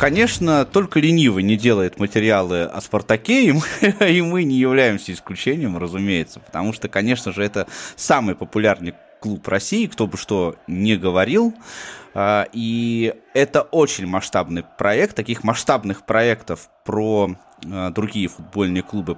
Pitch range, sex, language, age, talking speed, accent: 95-155 Hz, male, Russian, 20-39, 130 wpm, native